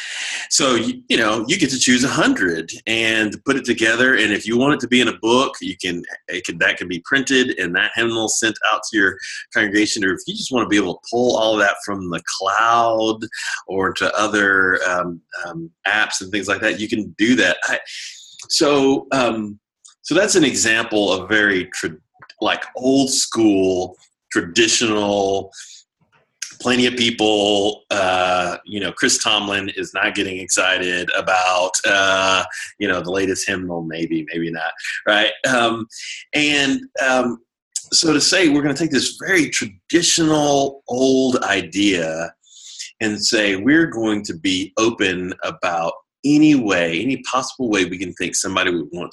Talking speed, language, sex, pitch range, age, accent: 170 wpm, English, male, 95-135 Hz, 30-49, American